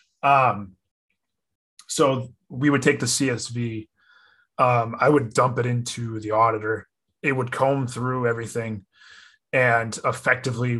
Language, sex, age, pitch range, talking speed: English, male, 20-39, 115-135 Hz, 120 wpm